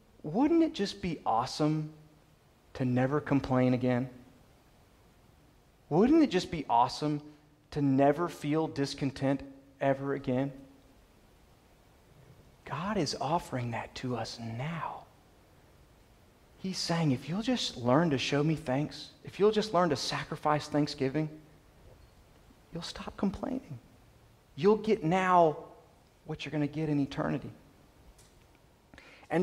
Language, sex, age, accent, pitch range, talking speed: English, male, 30-49, American, 135-180 Hz, 120 wpm